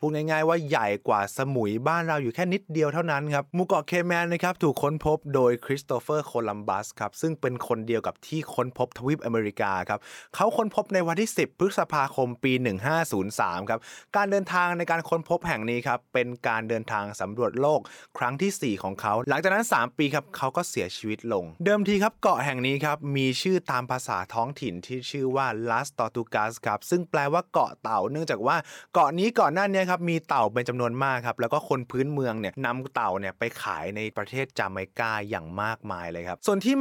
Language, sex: Thai, male